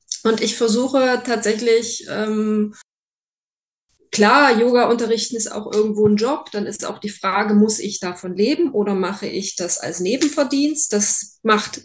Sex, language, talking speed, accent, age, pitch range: female, German, 150 wpm, German, 20-39, 210-245 Hz